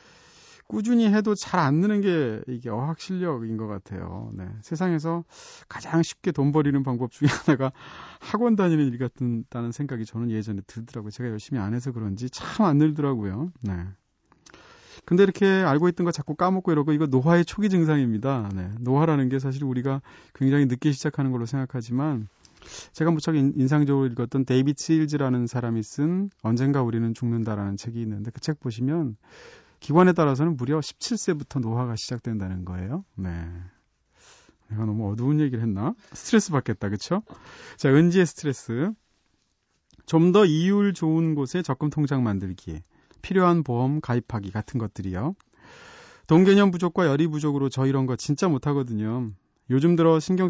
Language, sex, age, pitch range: Korean, male, 30-49, 115-160 Hz